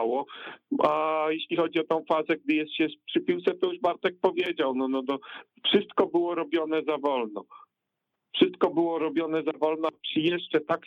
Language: Polish